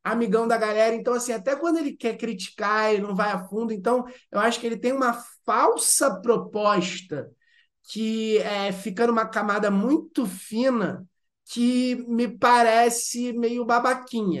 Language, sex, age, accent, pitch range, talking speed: Portuguese, male, 20-39, Brazilian, 180-230 Hz, 150 wpm